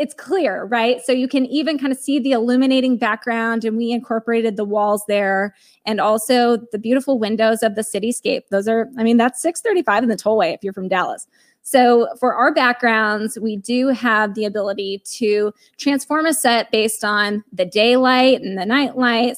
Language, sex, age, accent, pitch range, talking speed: English, female, 20-39, American, 220-265 Hz, 185 wpm